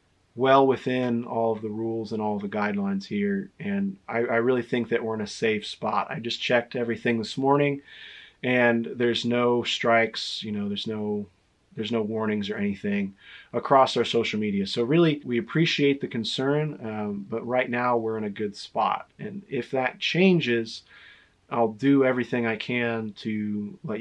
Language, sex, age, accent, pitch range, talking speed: English, male, 30-49, American, 115-140 Hz, 175 wpm